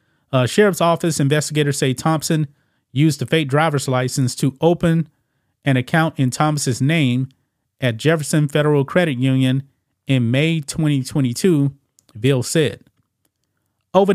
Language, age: English, 30-49